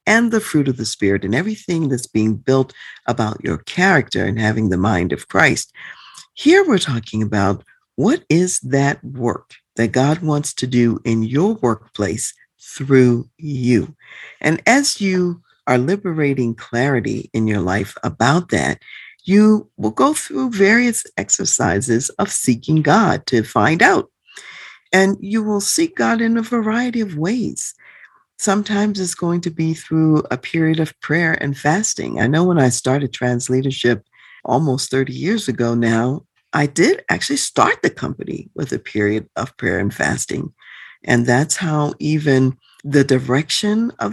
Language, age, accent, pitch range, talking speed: English, 50-69, American, 120-180 Hz, 155 wpm